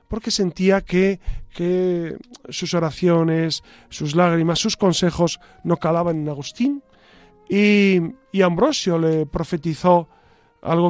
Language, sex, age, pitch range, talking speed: Spanish, male, 40-59, 160-205 Hz, 110 wpm